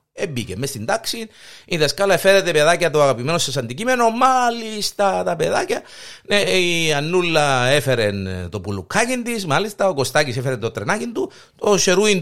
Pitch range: 130-205 Hz